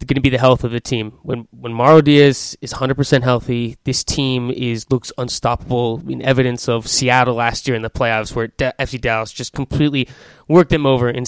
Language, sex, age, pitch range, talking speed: English, male, 20-39, 125-145 Hz, 220 wpm